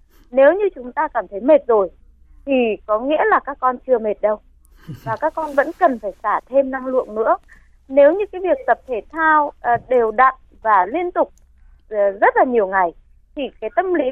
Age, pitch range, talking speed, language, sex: 20-39, 225-310 Hz, 205 wpm, Vietnamese, female